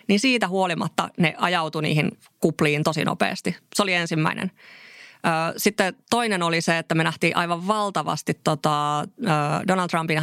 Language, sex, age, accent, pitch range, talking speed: Finnish, female, 20-39, native, 160-200 Hz, 140 wpm